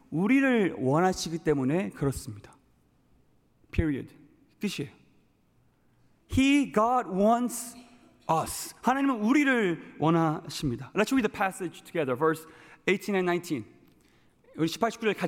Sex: male